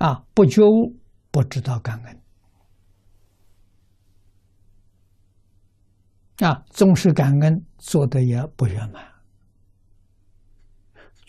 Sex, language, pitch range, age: male, Chinese, 95-120 Hz, 60-79